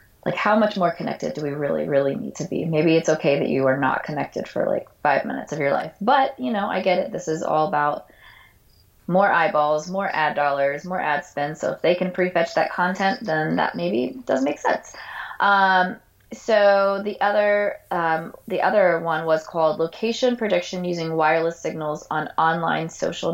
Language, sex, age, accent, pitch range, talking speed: English, female, 20-39, American, 150-185 Hz, 190 wpm